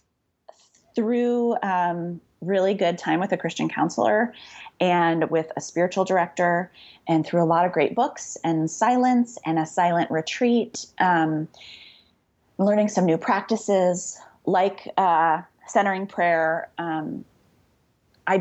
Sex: female